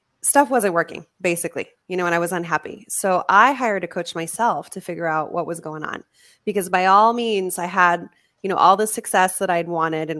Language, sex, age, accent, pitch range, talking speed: English, female, 20-39, American, 170-205 Hz, 225 wpm